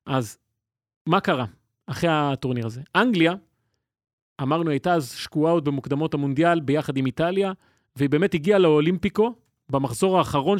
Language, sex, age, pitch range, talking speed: Hebrew, male, 30-49, 140-190 Hz, 125 wpm